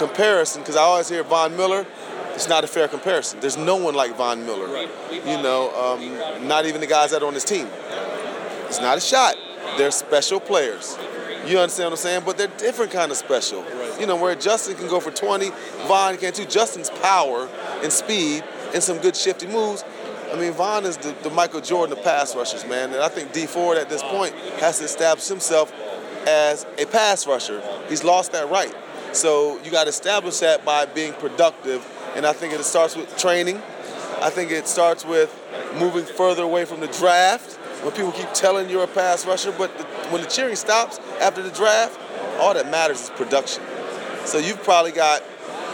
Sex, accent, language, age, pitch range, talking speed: male, American, English, 30-49, 160-200 Hz, 200 wpm